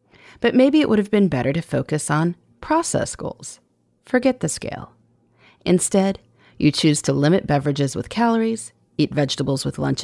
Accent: American